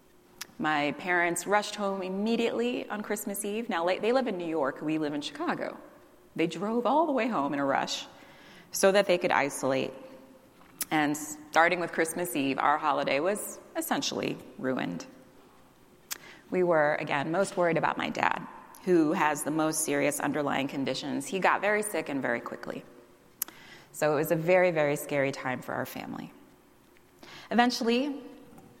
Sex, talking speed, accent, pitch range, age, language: female, 160 wpm, American, 160-230 Hz, 30-49, English